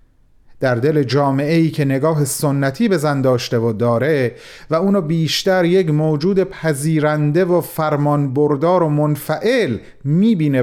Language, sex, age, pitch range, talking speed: Persian, male, 40-59, 125-185 Hz, 130 wpm